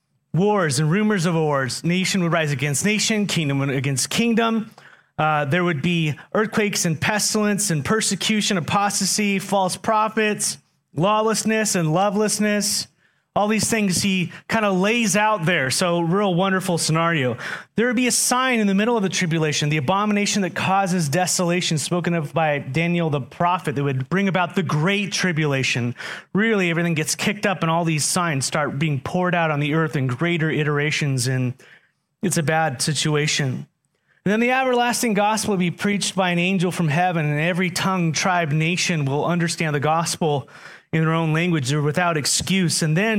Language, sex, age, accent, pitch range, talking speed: English, male, 30-49, American, 155-195 Hz, 170 wpm